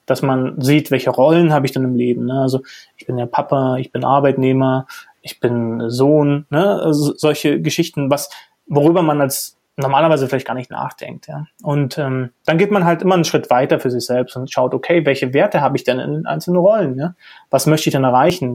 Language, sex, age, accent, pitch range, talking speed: German, male, 30-49, German, 130-160 Hz, 215 wpm